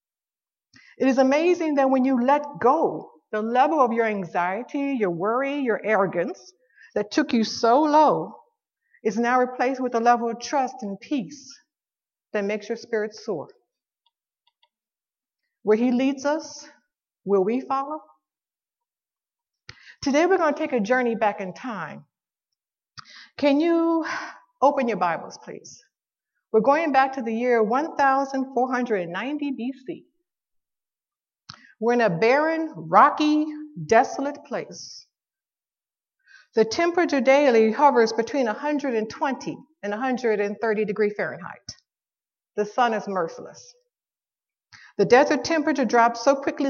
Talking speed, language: 120 wpm, English